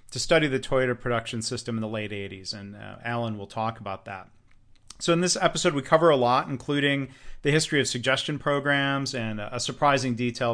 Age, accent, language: 40-59, American, English